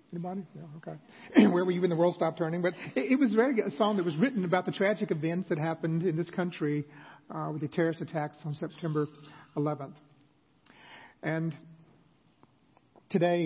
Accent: American